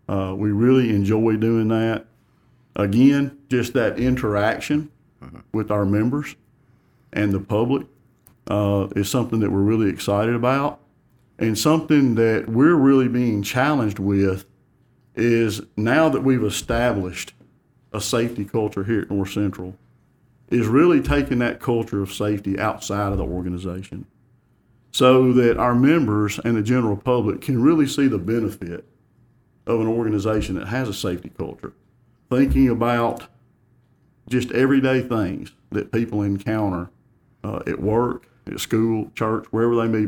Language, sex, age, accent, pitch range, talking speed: English, male, 50-69, American, 100-125 Hz, 140 wpm